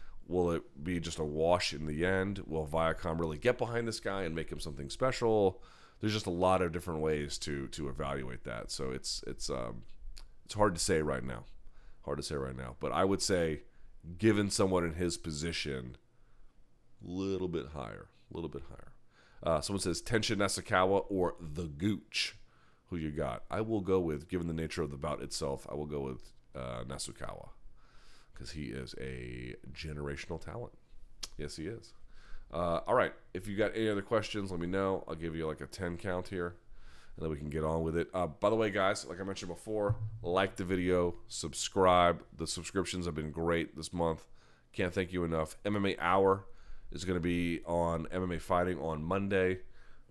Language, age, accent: English, 30-49, American